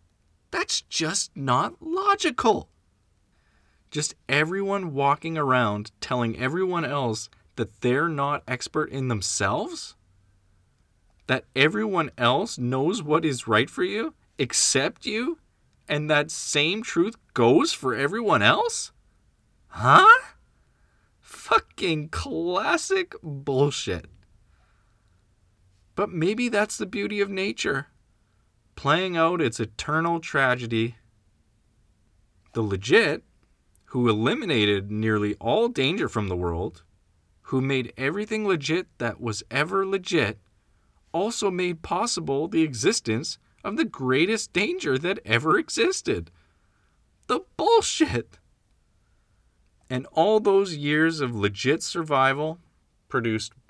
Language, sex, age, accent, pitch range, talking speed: English, male, 20-39, American, 105-170 Hz, 105 wpm